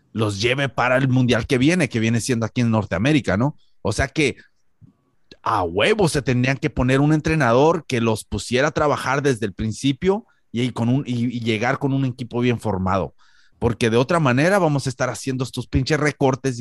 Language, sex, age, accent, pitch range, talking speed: Spanish, male, 30-49, Mexican, 120-155 Hz, 200 wpm